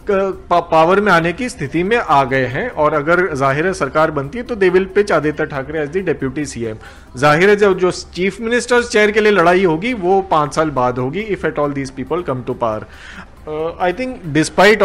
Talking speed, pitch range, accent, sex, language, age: 210 wpm, 155-205 Hz, native, male, Hindi, 30-49